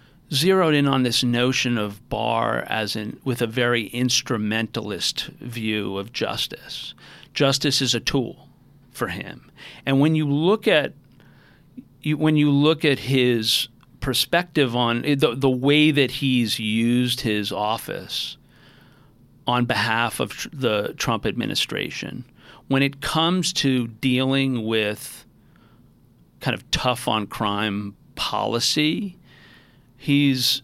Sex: male